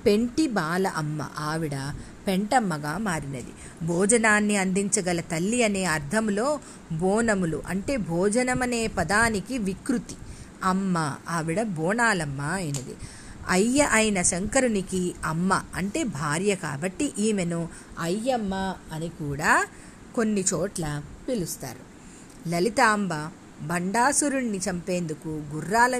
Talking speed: 90 wpm